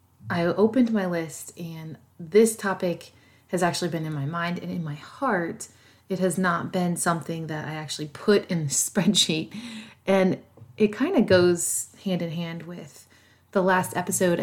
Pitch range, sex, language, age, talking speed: 155-190 Hz, female, English, 30-49, 160 wpm